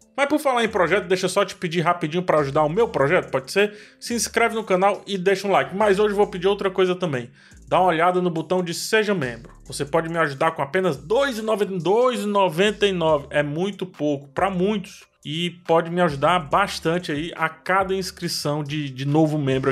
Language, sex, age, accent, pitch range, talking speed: Portuguese, male, 20-39, Brazilian, 160-200 Hz, 200 wpm